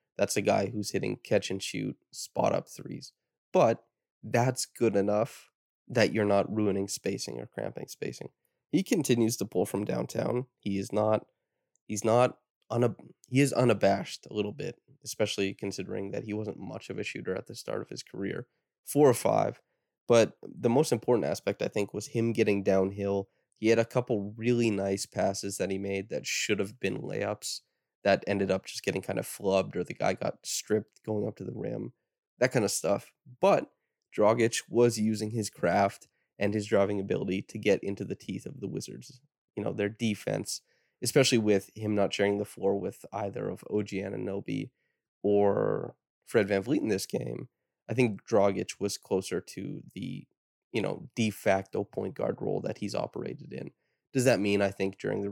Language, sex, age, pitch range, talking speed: English, male, 20-39, 100-115 Hz, 190 wpm